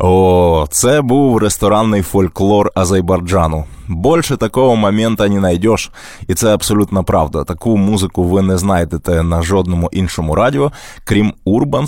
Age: 20-39